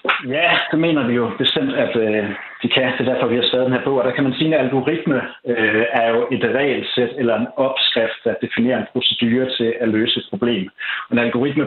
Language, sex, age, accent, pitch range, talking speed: Danish, male, 60-79, native, 115-140 Hz, 235 wpm